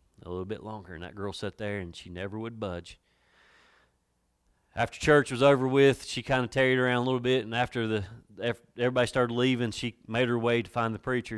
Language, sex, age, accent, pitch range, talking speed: English, male, 30-49, American, 90-120 Hz, 215 wpm